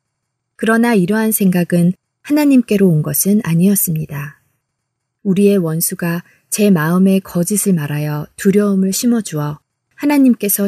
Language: Korean